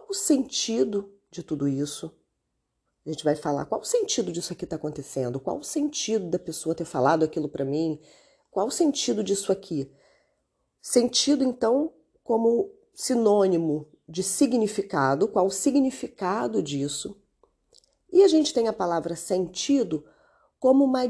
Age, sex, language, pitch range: 40-59, female, Portuguese, 160-270 Hz